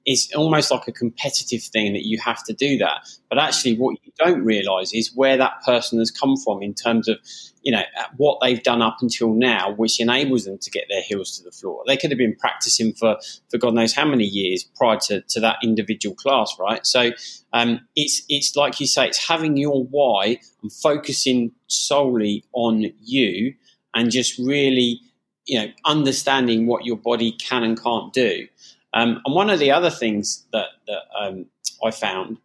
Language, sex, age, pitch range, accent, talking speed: English, male, 20-39, 115-145 Hz, British, 195 wpm